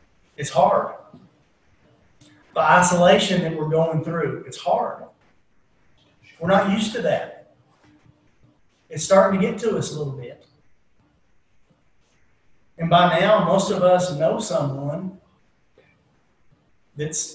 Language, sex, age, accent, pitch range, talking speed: English, male, 40-59, American, 145-180 Hz, 115 wpm